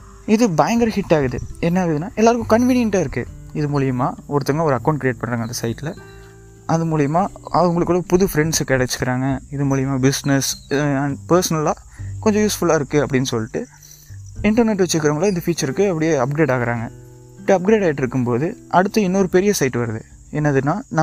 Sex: male